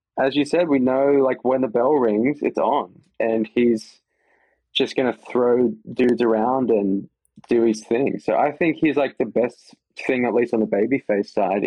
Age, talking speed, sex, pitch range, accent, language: 20-39, 195 wpm, male, 110-130 Hz, Australian, English